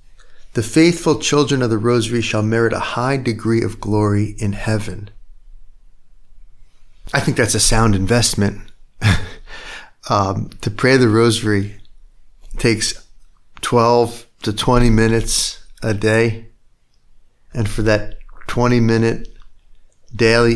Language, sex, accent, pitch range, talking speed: English, male, American, 100-120 Hz, 110 wpm